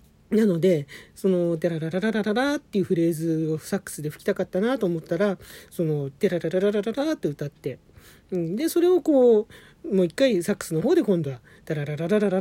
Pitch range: 165-265 Hz